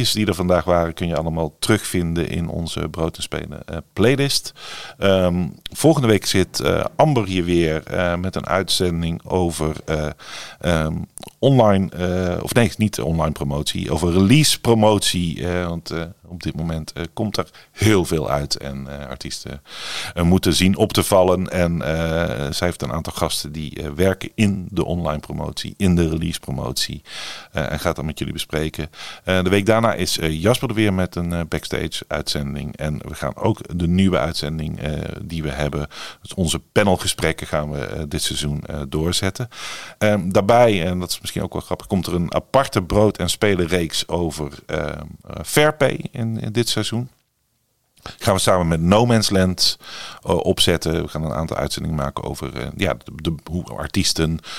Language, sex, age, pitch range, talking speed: English, male, 50-69, 80-95 Hz, 180 wpm